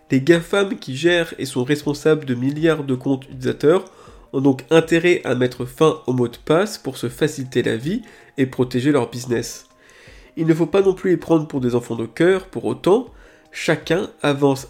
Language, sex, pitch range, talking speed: French, male, 125-165 Hz, 195 wpm